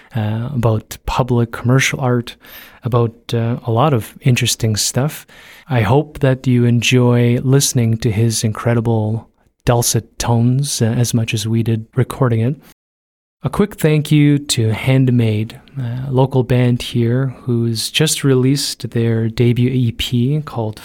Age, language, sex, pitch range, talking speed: 30-49, English, male, 115-130 Hz, 140 wpm